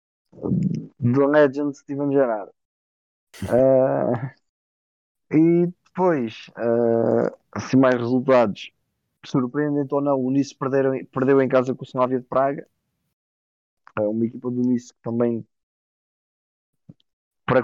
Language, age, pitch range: Portuguese, 20-39, 110-130 Hz